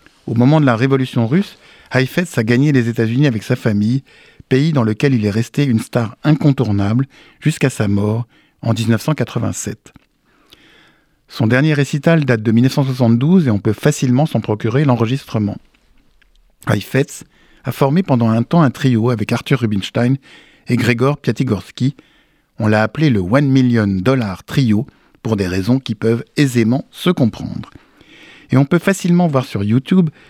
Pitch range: 115-145 Hz